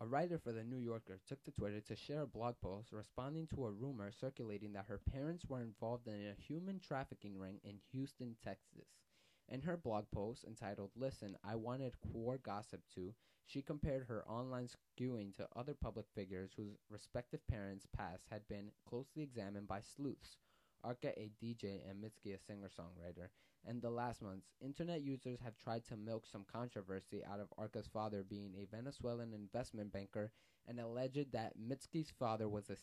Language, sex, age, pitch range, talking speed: English, male, 20-39, 100-130 Hz, 175 wpm